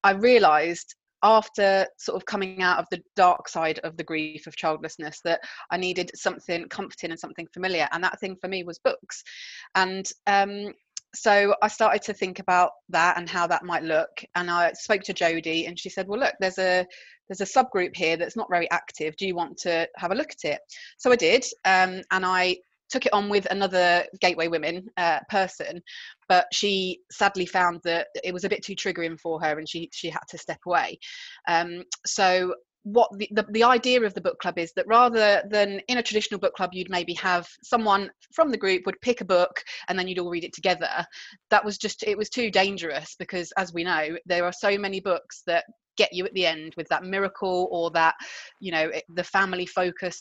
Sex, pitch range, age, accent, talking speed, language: female, 165-200 Hz, 20-39, British, 215 wpm, English